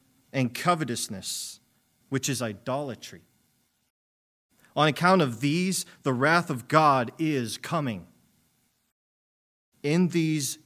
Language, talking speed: English, 95 wpm